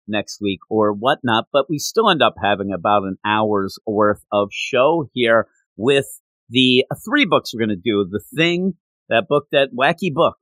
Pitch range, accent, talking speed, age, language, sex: 105-135 Hz, American, 185 wpm, 50-69, English, male